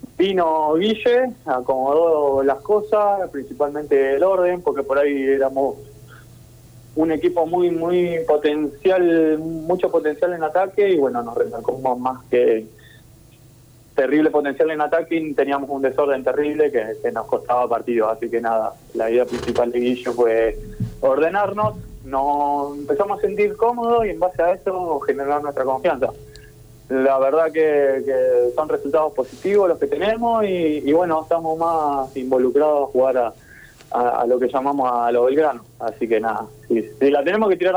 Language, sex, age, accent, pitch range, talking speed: Spanish, male, 20-39, Argentinian, 125-175 Hz, 155 wpm